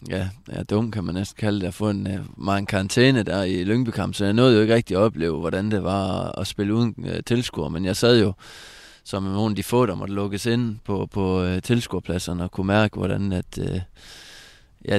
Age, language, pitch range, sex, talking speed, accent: 20-39, Danish, 95-110 Hz, male, 230 wpm, native